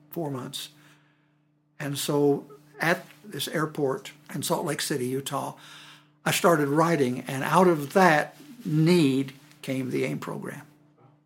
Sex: male